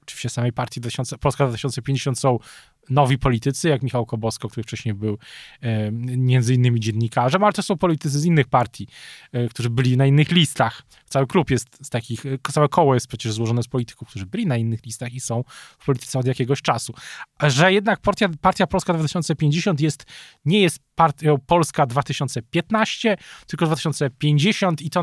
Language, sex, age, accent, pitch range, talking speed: Polish, male, 20-39, native, 130-170 Hz, 175 wpm